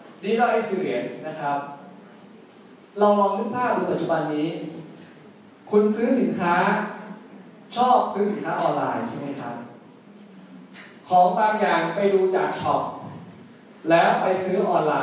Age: 20-39